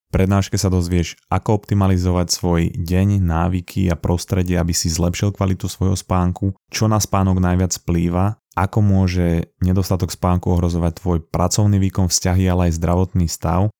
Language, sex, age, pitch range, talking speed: Slovak, male, 20-39, 85-95 Hz, 150 wpm